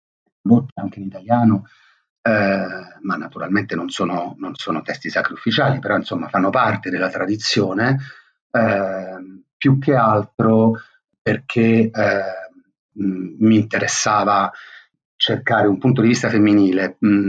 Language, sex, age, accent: Italian, male, 40-59, native